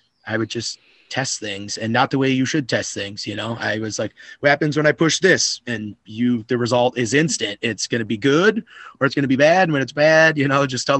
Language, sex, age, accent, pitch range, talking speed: English, male, 30-49, American, 110-130 Hz, 265 wpm